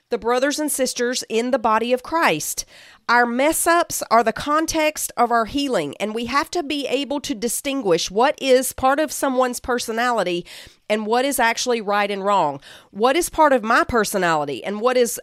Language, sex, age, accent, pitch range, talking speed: English, female, 40-59, American, 225-300 Hz, 185 wpm